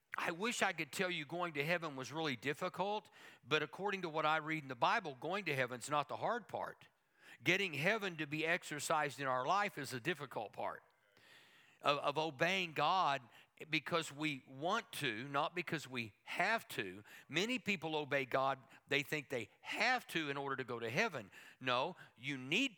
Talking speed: 190 wpm